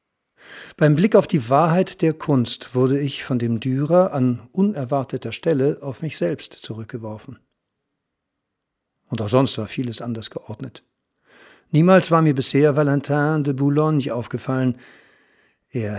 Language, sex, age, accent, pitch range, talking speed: German, male, 50-69, German, 125-155 Hz, 130 wpm